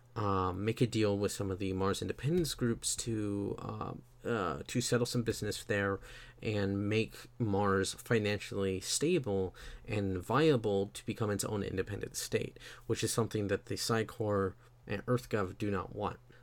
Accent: American